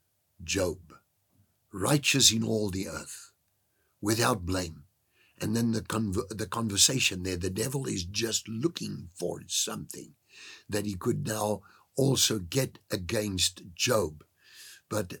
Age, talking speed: 60-79, 120 wpm